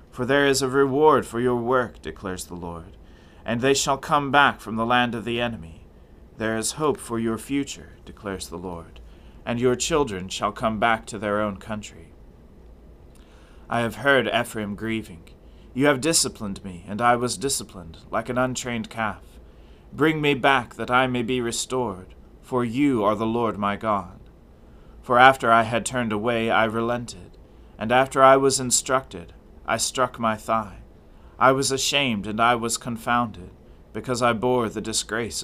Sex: male